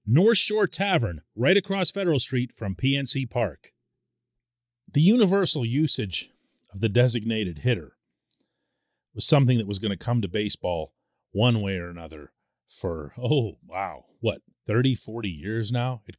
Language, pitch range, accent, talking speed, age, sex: English, 90-125 Hz, American, 145 wpm, 40-59, male